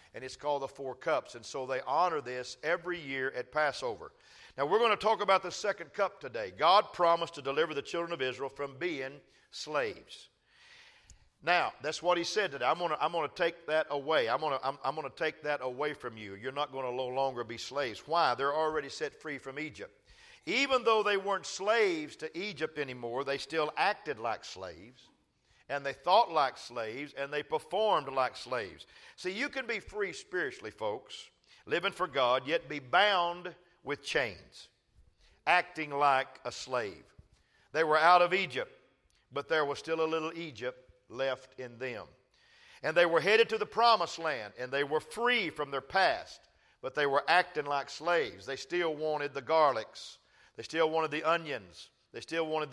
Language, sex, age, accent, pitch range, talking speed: English, male, 50-69, American, 140-180 Hz, 190 wpm